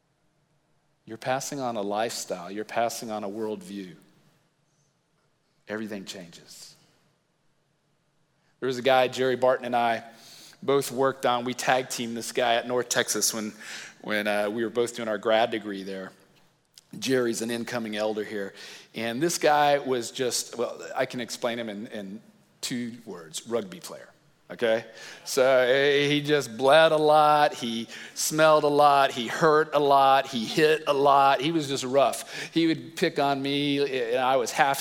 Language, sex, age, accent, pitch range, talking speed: English, male, 40-59, American, 120-155 Hz, 165 wpm